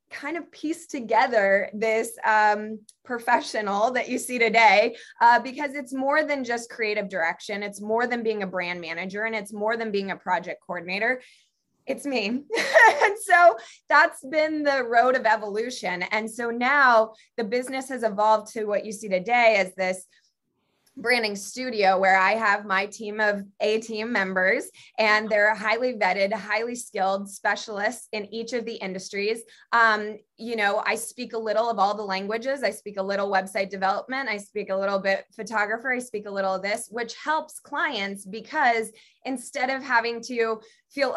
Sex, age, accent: female, 20-39, American